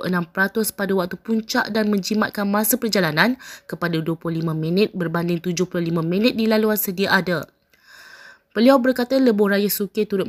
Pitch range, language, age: 185-220 Hz, Malay, 20-39